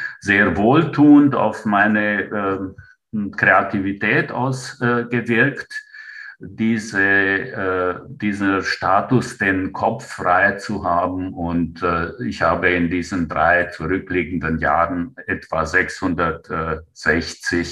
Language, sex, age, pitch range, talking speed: German, male, 60-79, 85-120 Hz, 95 wpm